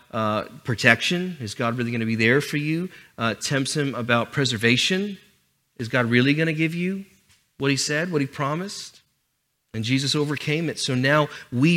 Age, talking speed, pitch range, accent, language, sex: 40-59, 185 wpm, 120-155 Hz, American, English, male